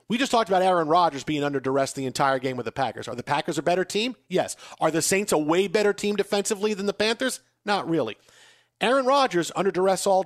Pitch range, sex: 145-190 Hz, male